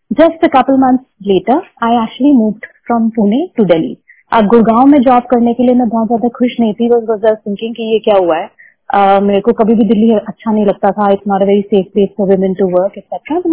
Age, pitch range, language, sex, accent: 30-49, 220-265 Hz, Hindi, female, native